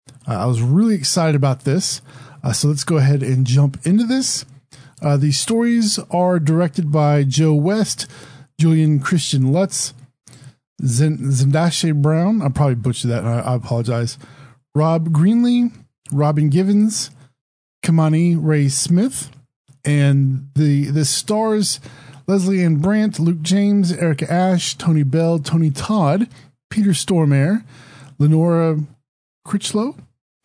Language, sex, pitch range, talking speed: English, male, 130-175 Hz, 125 wpm